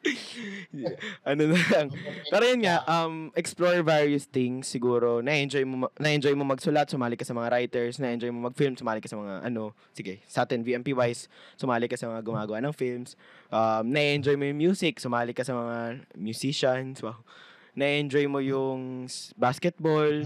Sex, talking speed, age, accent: male, 160 wpm, 20-39, native